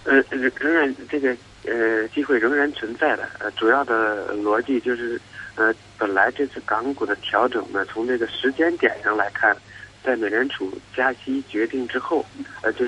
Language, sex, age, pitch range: Chinese, male, 50-69, 105-140 Hz